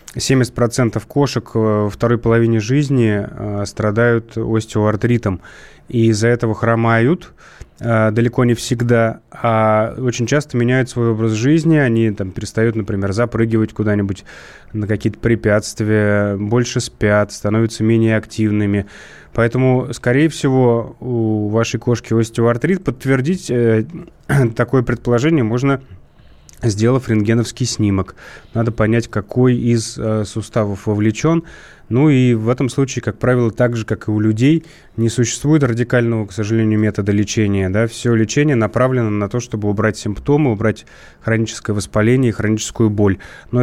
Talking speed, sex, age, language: 125 wpm, male, 20-39, Russian